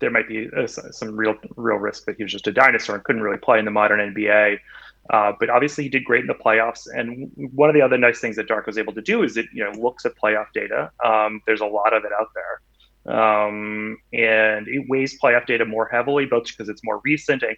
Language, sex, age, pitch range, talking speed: English, male, 30-49, 105-135 Hz, 250 wpm